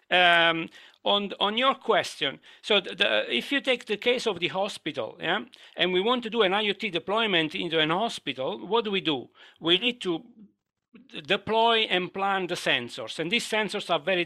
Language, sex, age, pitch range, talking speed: English, male, 50-69, 160-215 Hz, 175 wpm